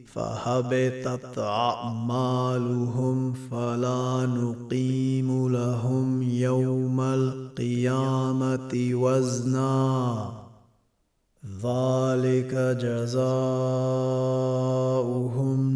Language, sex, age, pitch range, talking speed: Arabic, male, 30-49, 125-130 Hz, 40 wpm